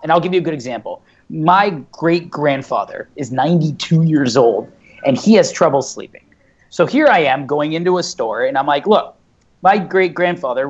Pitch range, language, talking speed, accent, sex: 125-160 Hz, English, 190 wpm, American, male